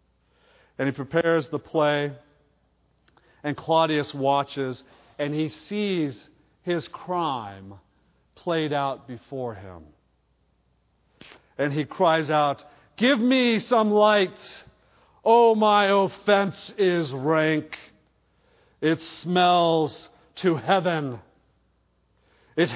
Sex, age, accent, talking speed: male, 50-69, American, 90 wpm